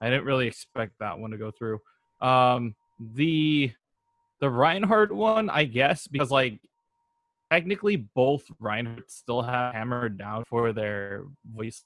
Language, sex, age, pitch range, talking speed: English, male, 20-39, 115-150 Hz, 140 wpm